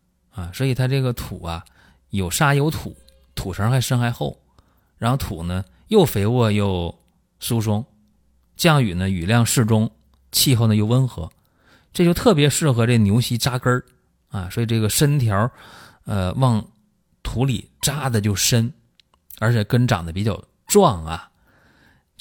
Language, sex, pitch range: Chinese, male, 90-125 Hz